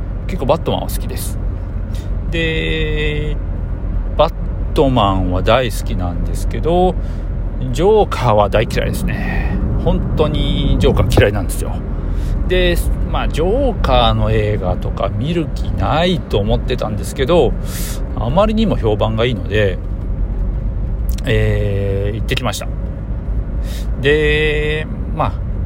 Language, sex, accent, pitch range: Japanese, male, native, 95-125 Hz